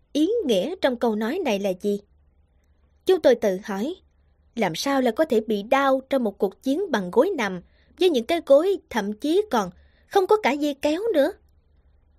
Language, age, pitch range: Vietnamese, 20-39, 195-295 Hz